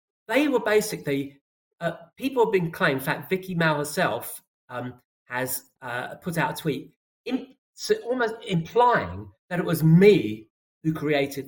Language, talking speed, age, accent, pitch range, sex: English, 155 wpm, 40-59, British, 115-165 Hz, male